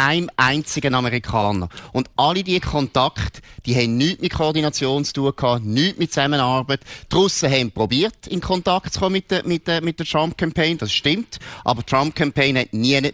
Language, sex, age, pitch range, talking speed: German, male, 30-49, 115-150 Hz, 180 wpm